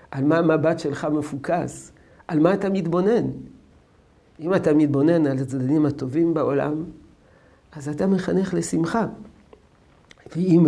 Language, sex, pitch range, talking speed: Hebrew, male, 145-200 Hz, 120 wpm